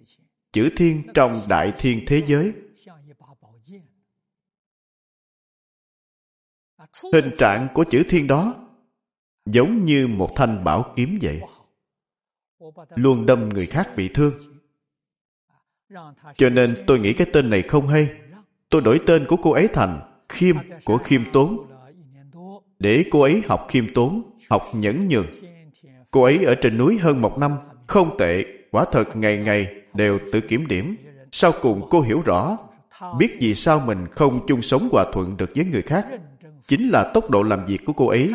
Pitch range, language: 115-170 Hz, Vietnamese